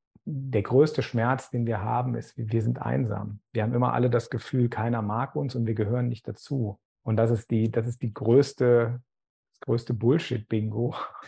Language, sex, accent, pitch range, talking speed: German, male, German, 105-125 Hz, 180 wpm